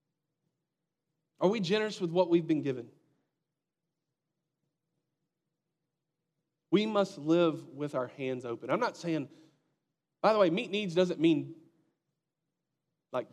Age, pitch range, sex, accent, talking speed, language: 40-59, 155-190 Hz, male, American, 115 wpm, English